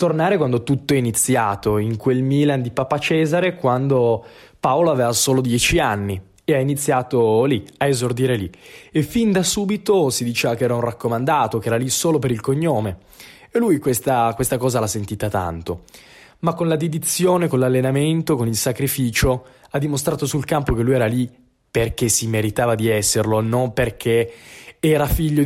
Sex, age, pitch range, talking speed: male, 20-39, 115-145 Hz, 175 wpm